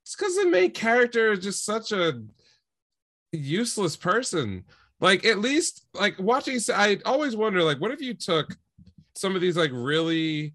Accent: American